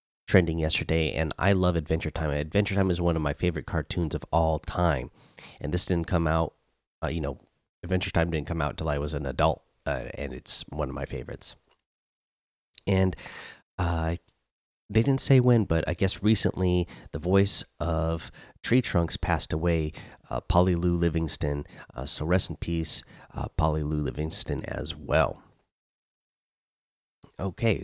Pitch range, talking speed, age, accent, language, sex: 80-95 Hz, 165 wpm, 30-49, American, English, male